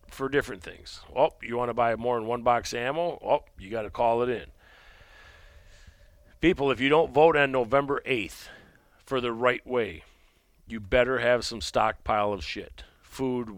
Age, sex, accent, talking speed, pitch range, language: 40-59, male, American, 180 wpm, 95-125 Hz, English